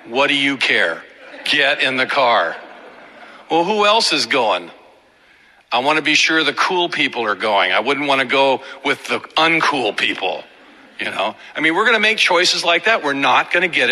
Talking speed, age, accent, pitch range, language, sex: 205 wpm, 50-69, American, 155-215 Hz, English, male